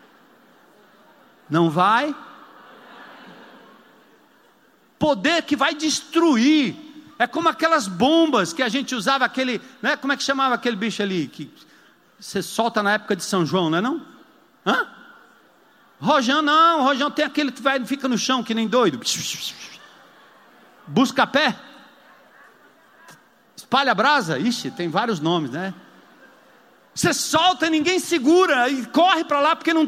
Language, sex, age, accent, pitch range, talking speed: Portuguese, male, 50-69, Brazilian, 225-310 Hz, 130 wpm